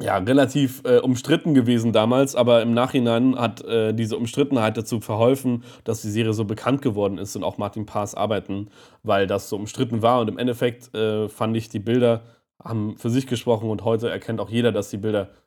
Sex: male